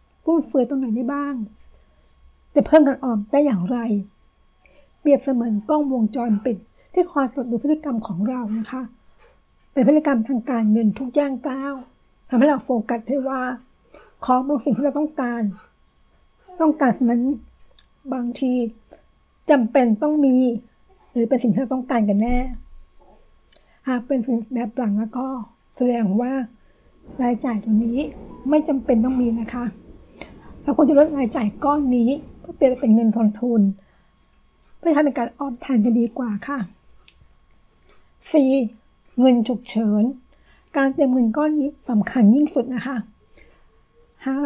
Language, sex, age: Thai, female, 60-79